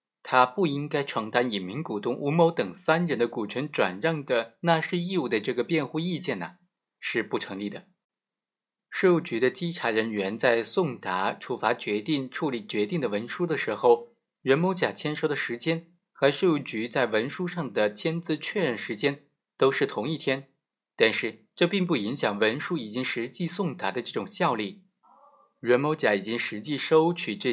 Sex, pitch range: male, 125-180 Hz